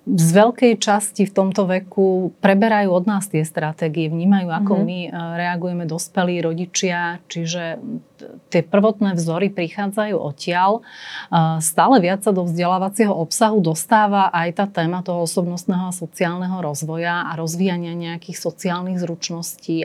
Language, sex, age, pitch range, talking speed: Slovak, female, 30-49, 170-200 Hz, 130 wpm